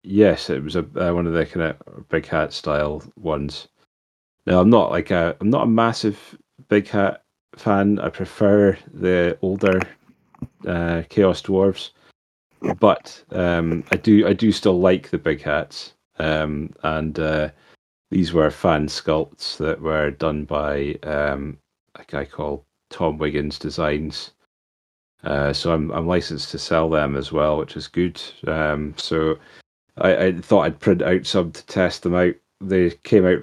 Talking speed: 165 wpm